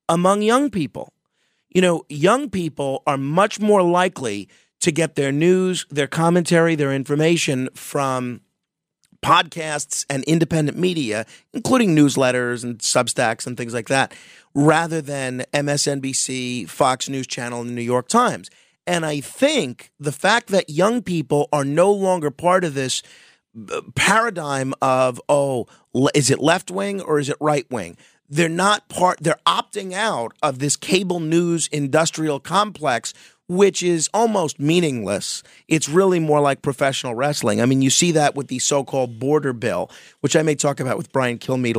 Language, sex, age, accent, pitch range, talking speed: English, male, 40-59, American, 130-170 Hz, 160 wpm